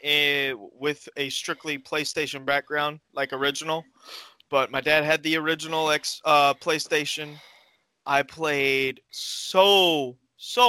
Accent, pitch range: American, 140-165 Hz